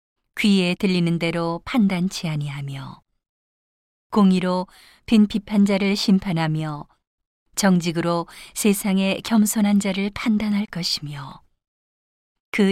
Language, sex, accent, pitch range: Korean, female, native, 170-205 Hz